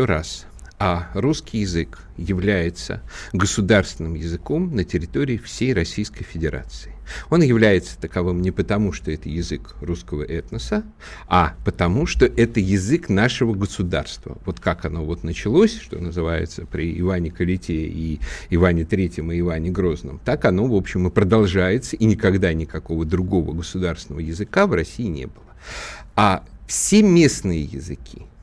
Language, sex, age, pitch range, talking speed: Russian, male, 50-69, 85-115 Hz, 135 wpm